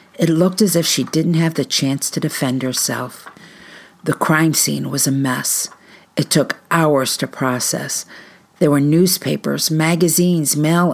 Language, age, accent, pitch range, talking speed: English, 50-69, American, 145-185 Hz, 155 wpm